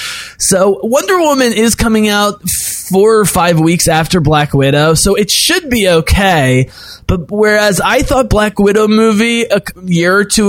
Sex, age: male, 20-39